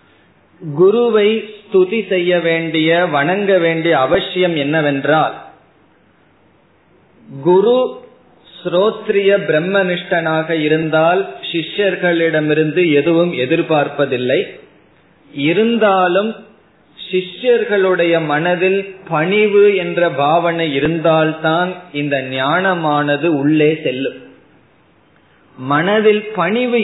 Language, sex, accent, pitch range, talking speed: Tamil, male, native, 145-190 Hz, 60 wpm